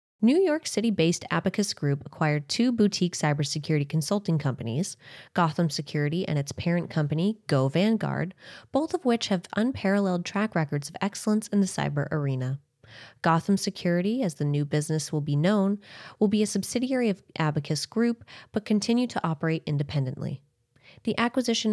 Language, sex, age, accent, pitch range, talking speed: English, female, 20-39, American, 145-205 Hz, 155 wpm